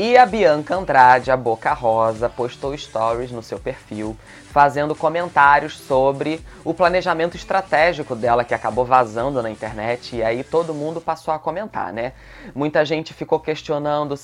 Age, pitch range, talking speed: 20-39, 125-170 Hz, 150 wpm